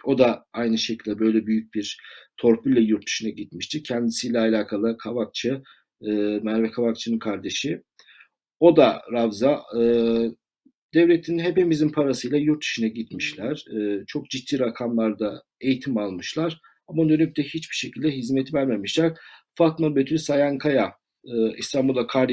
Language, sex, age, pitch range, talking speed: Turkish, male, 50-69, 115-155 Hz, 120 wpm